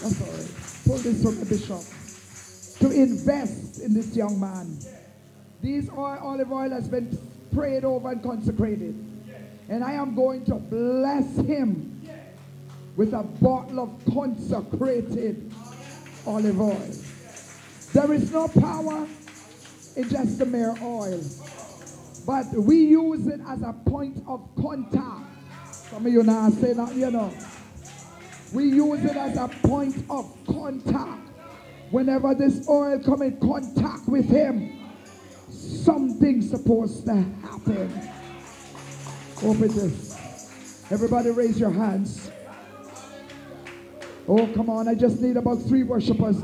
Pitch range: 195-270 Hz